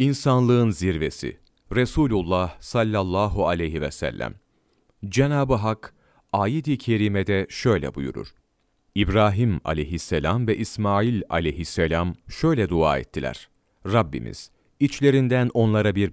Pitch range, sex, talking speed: 90-120 Hz, male, 95 wpm